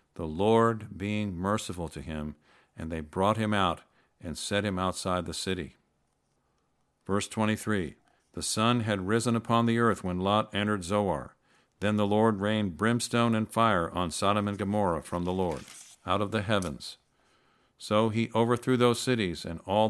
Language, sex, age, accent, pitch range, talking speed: English, male, 50-69, American, 95-110 Hz, 165 wpm